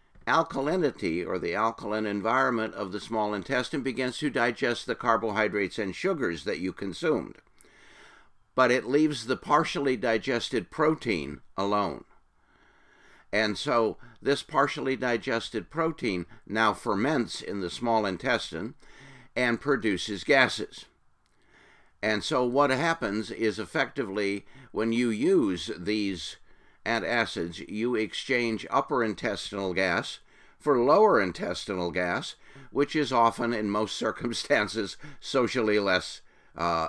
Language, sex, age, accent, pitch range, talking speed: English, male, 60-79, American, 105-135 Hz, 115 wpm